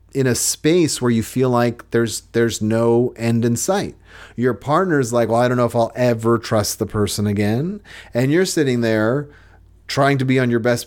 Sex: male